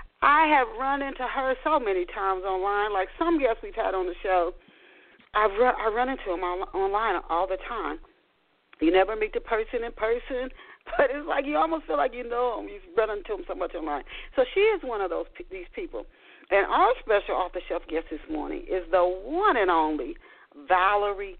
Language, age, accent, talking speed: English, 40-59, American, 210 wpm